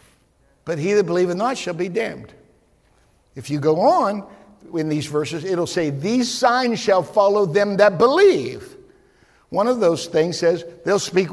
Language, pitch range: English, 165-215 Hz